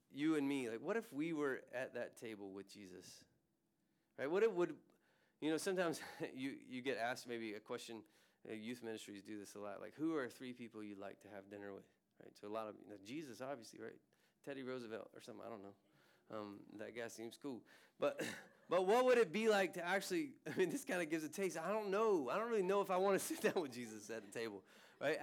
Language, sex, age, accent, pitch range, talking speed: English, male, 20-39, American, 130-195 Hz, 245 wpm